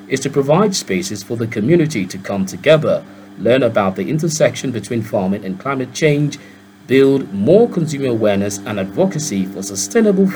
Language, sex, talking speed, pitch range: English, male, 155 wpm, 100-155 Hz